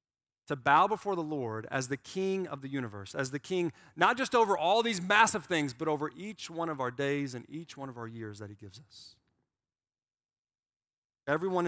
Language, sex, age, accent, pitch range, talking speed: English, male, 40-59, American, 115-185 Hz, 200 wpm